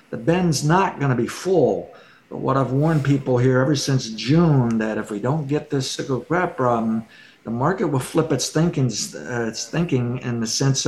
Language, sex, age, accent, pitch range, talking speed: English, male, 50-69, American, 115-145 Hz, 205 wpm